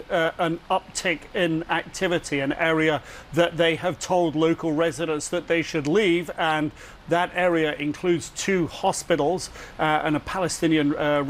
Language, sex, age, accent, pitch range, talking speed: English, male, 40-59, British, 150-170 Hz, 150 wpm